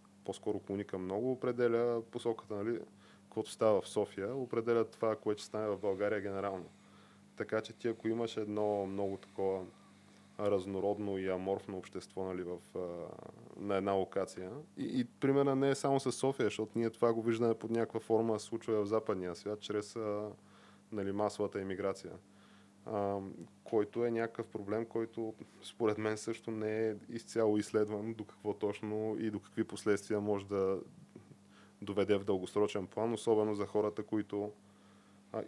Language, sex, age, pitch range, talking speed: Bulgarian, male, 20-39, 100-110 Hz, 150 wpm